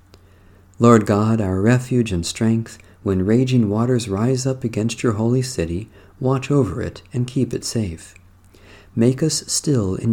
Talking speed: 155 wpm